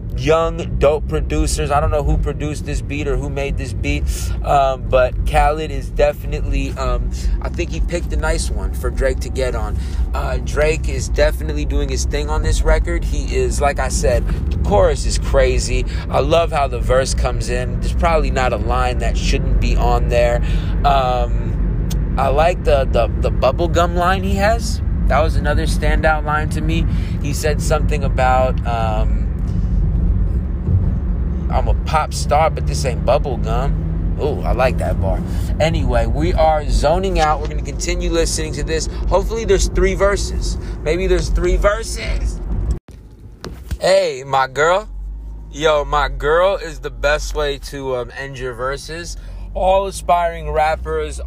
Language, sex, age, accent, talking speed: English, male, 20-39, American, 165 wpm